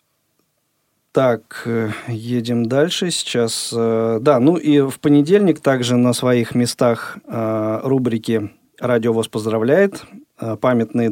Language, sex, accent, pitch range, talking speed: Russian, male, native, 115-140 Hz, 95 wpm